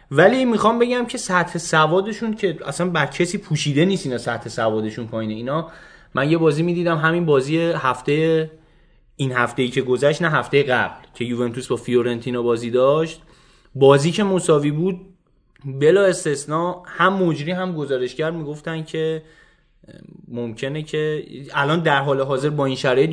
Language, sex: Persian, male